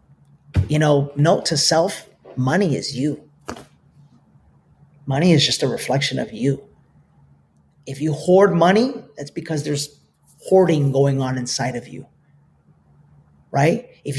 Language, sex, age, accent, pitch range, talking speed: English, male, 30-49, American, 135-160 Hz, 125 wpm